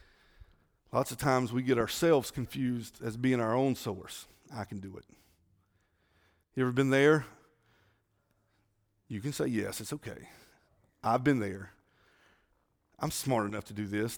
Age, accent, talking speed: 40-59, American, 150 wpm